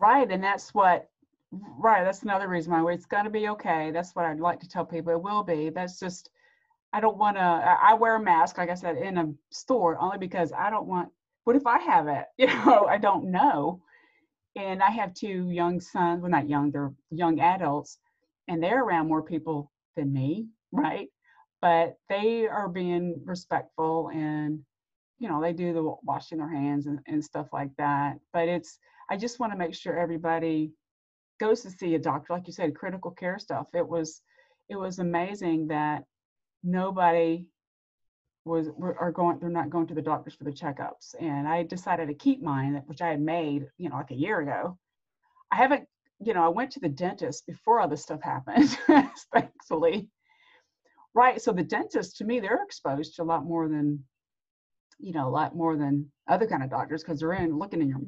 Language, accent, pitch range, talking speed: English, American, 155-195 Hz, 200 wpm